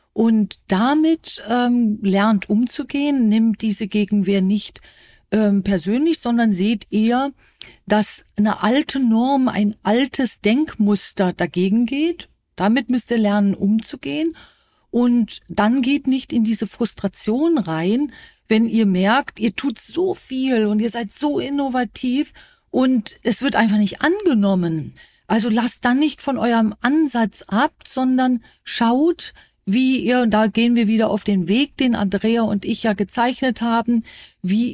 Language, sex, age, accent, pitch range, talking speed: German, female, 40-59, German, 210-255 Hz, 140 wpm